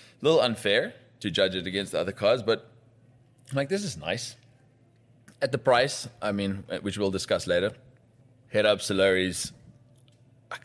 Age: 20-39